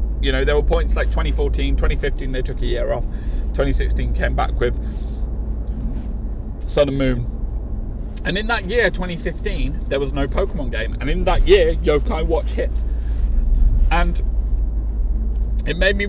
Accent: British